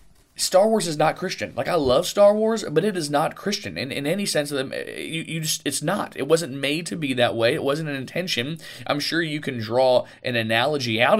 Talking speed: 240 wpm